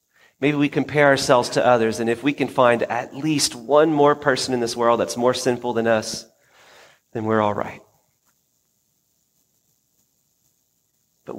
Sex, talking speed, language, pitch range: male, 155 wpm, English, 115-150 Hz